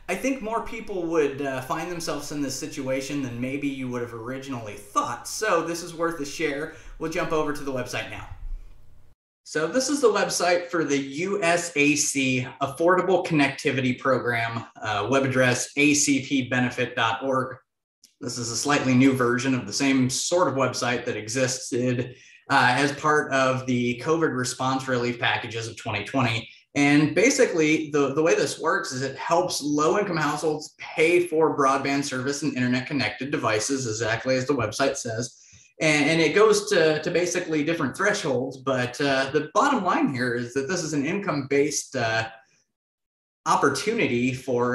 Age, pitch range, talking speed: 30-49, 120-150 Hz, 160 wpm